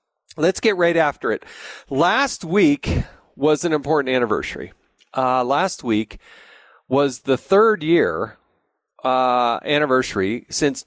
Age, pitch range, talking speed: 40-59, 120-150 Hz, 115 wpm